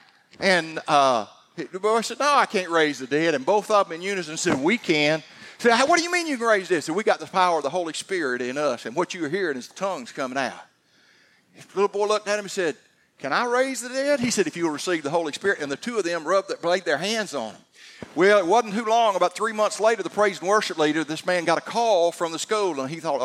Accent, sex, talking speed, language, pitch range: American, male, 285 wpm, English, 135-190 Hz